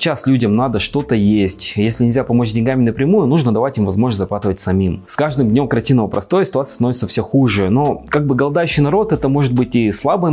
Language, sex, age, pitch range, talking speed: Russian, male, 20-39, 100-140 Hz, 205 wpm